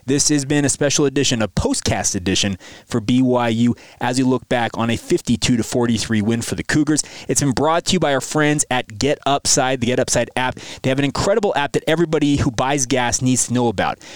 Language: English